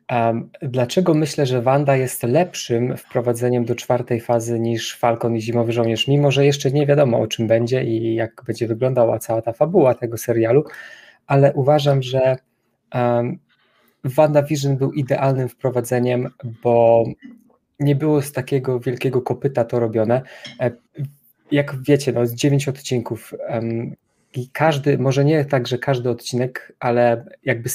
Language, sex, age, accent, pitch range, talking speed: Polish, male, 20-39, native, 120-145 Hz, 145 wpm